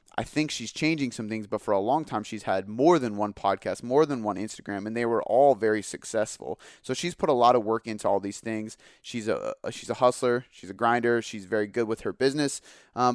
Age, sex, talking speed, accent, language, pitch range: 30-49, male, 275 wpm, American, English, 110-135 Hz